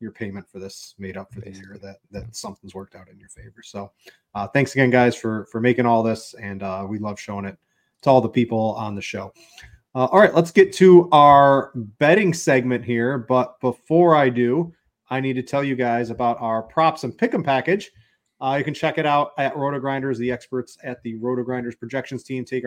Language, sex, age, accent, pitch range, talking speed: English, male, 30-49, American, 115-140 Hz, 225 wpm